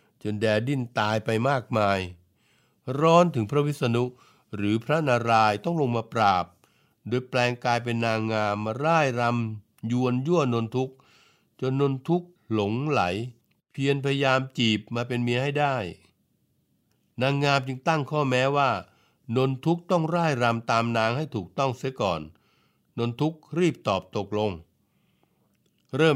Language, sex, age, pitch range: Thai, male, 60-79, 110-140 Hz